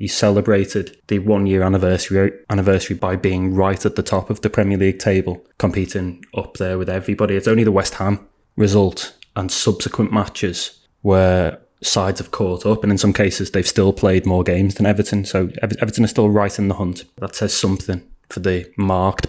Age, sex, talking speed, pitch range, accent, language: 20-39, male, 190 wpm, 95-110 Hz, British, English